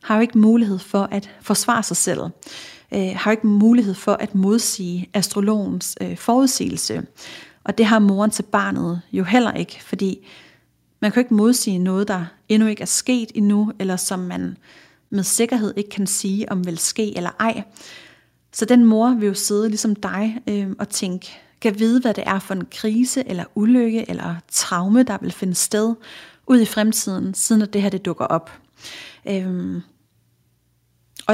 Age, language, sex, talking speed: 40-59, Danish, female, 180 wpm